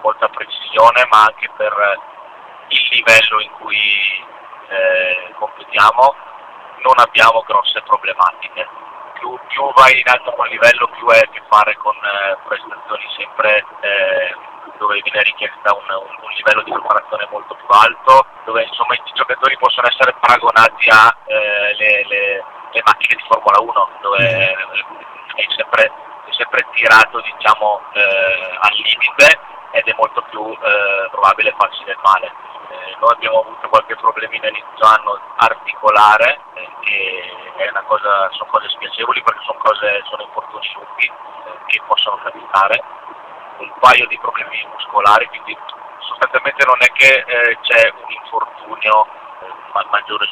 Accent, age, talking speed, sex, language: native, 30-49, 140 wpm, male, Italian